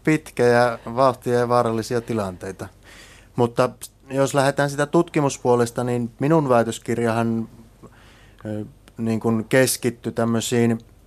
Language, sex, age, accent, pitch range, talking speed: Finnish, male, 30-49, native, 105-125 Hz, 100 wpm